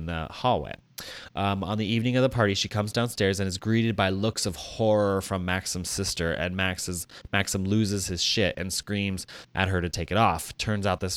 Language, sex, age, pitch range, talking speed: English, male, 20-39, 90-110 Hz, 210 wpm